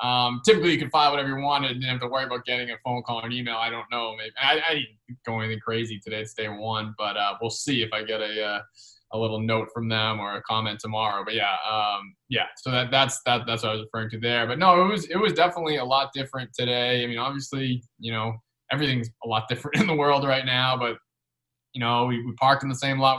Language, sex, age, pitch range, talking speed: English, male, 20-39, 110-130 Hz, 270 wpm